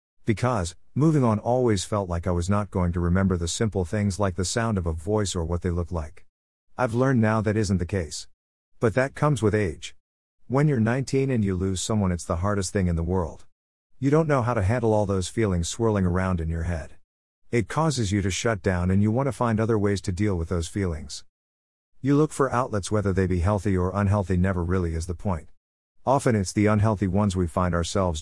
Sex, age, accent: male, 50-69, American